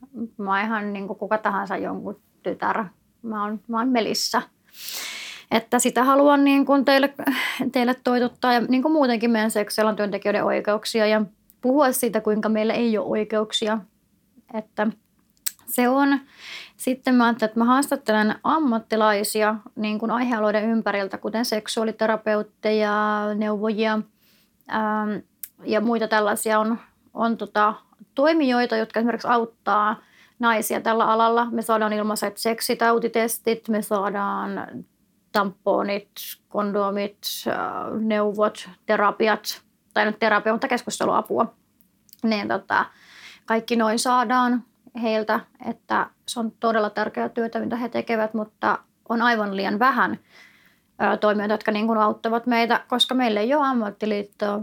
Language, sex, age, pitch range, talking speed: Finnish, female, 30-49, 210-235 Hz, 120 wpm